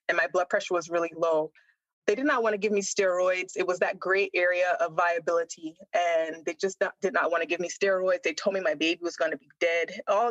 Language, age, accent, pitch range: English, 20-39, American, 180-235 Hz